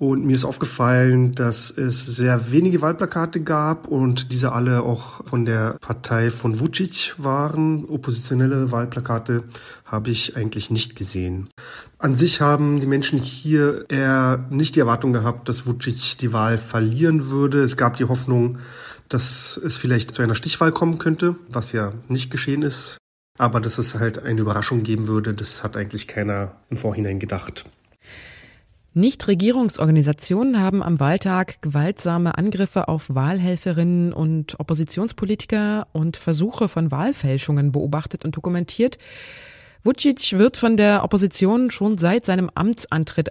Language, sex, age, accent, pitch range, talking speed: German, male, 30-49, German, 120-170 Hz, 140 wpm